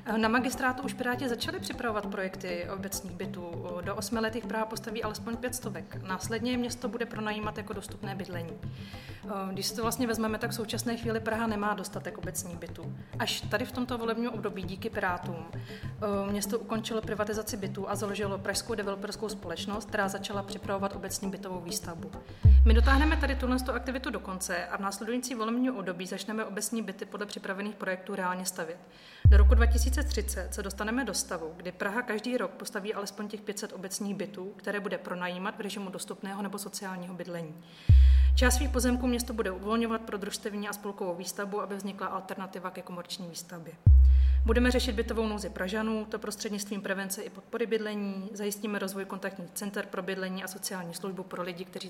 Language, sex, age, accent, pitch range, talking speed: Czech, female, 30-49, native, 185-220 Hz, 170 wpm